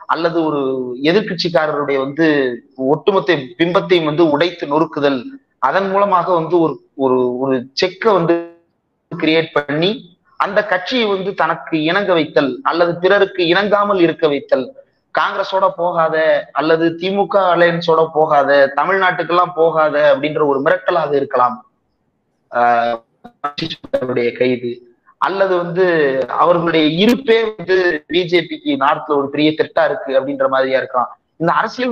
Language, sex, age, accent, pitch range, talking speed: Tamil, male, 30-49, native, 150-195 Hz, 105 wpm